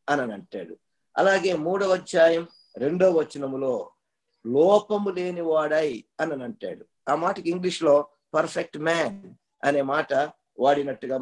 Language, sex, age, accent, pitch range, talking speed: Telugu, male, 50-69, native, 140-180 Hz, 105 wpm